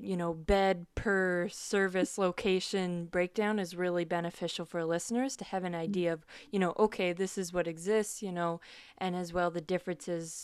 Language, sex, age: English, female, 20-39